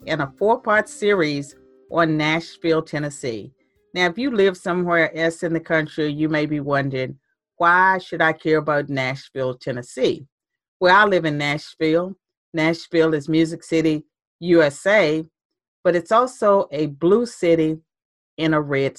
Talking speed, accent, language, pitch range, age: 145 wpm, American, English, 155-195 Hz, 40-59